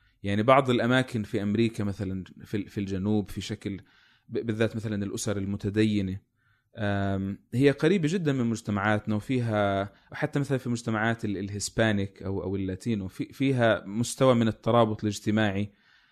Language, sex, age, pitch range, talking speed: Arabic, male, 30-49, 100-125 Hz, 120 wpm